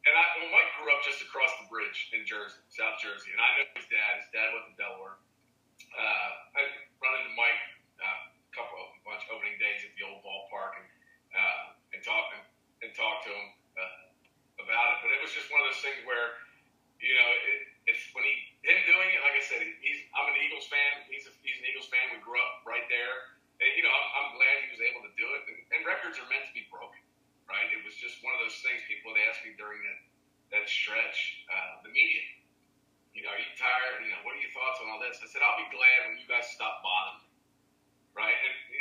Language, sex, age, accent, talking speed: English, male, 40-59, American, 245 wpm